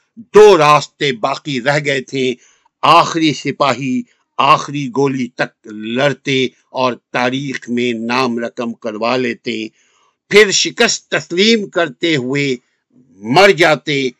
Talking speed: 110 wpm